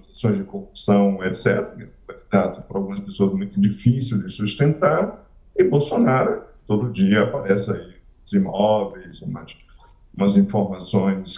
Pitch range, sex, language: 105-125 Hz, male, Portuguese